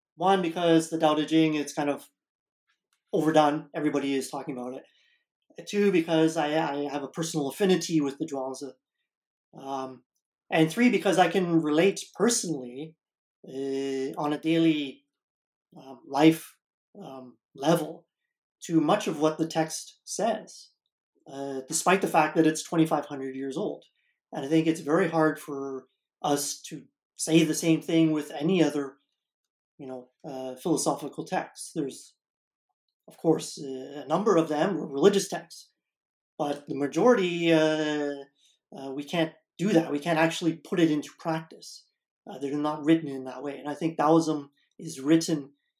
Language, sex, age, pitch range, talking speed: English, male, 30-49, 140-165 Hz, 155 wpm